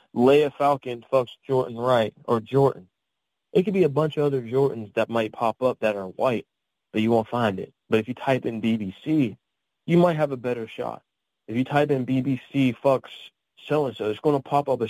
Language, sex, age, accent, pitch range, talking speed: English, male, 30-49, American, 110-140 Hz, 210 wpm